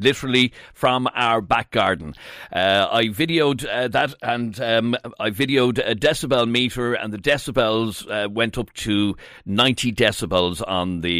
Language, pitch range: English, 115-150 Hz